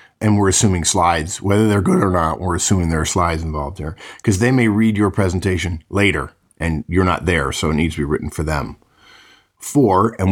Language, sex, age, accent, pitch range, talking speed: English, male, 50-69, American, 85-105 Hz, 215 wpm